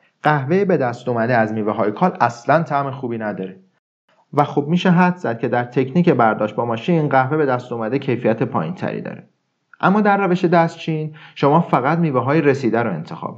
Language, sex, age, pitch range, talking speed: Persian, male, 40-59, 115-165 Hz, 190 wpm